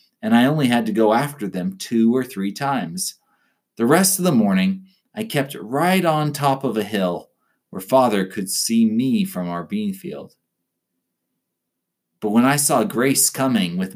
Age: 30-49